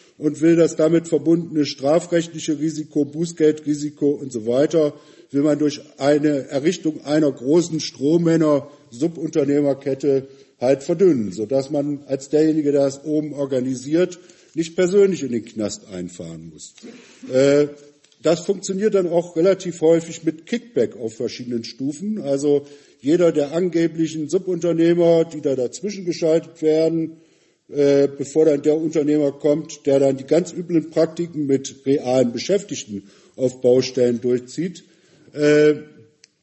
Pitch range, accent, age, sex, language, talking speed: 135-160 Hz, German, 50-69, male, English, 125 wpm